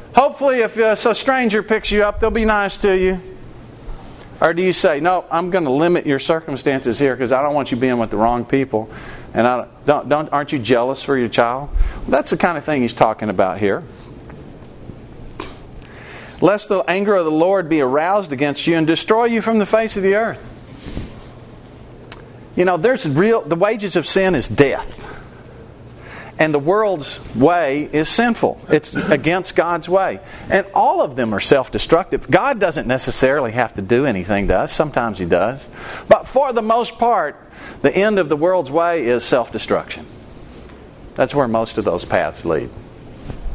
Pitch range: 130-195 Hz